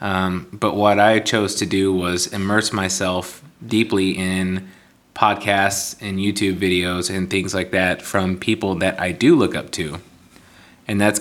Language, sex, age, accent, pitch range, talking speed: English, male, 20-39, American, 95-105 Hz, 160 wpm